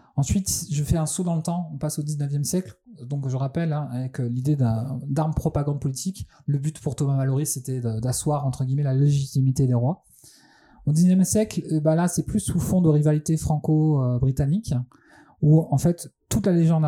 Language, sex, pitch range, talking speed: French, male, 135-160 Hz, 190 wpm